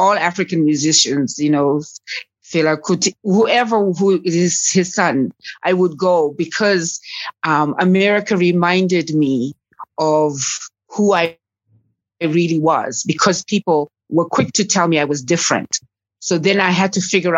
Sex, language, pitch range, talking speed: female, English, 150-195 Hz, 135 wpm